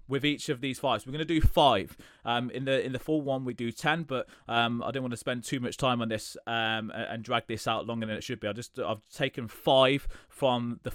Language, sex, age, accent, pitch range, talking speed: English, male, 20-39, British, 115-145 Hz, 275 wpm